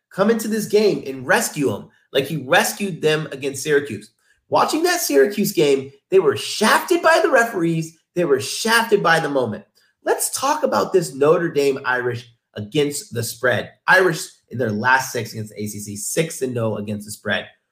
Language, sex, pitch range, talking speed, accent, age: English, male, 120-185 Hz, 180 wpm, American, 30-49